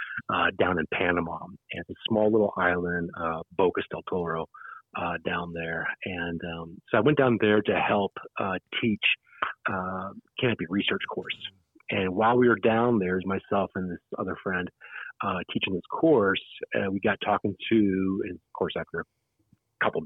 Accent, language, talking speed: American, English, 170 wpm